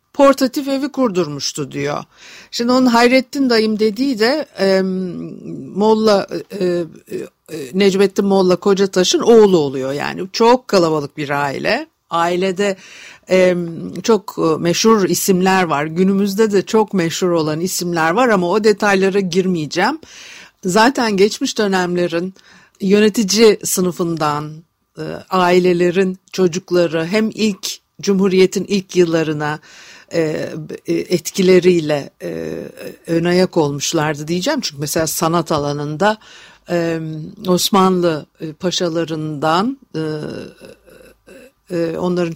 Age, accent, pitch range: 60-79, native, 165-205 Hz